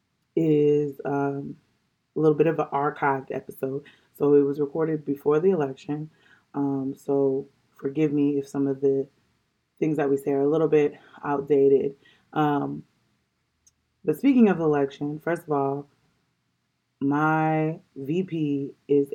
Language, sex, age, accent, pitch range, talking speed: English, female, 20-39, American, 140-155 Hz, 140 wpm